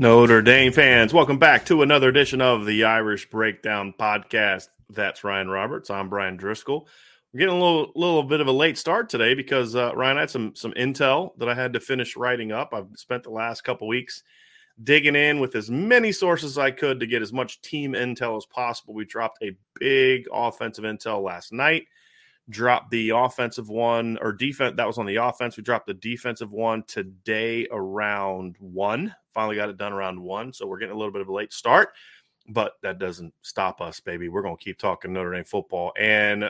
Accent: American